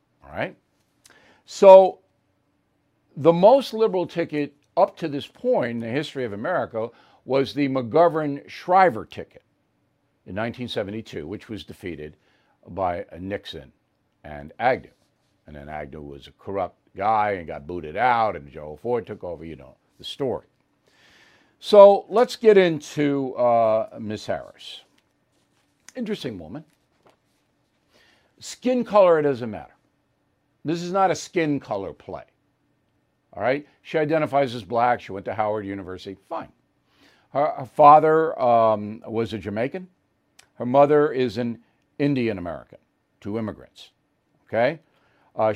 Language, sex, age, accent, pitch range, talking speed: English, male, 60-79, American, 110-160 Hz, 130 wpm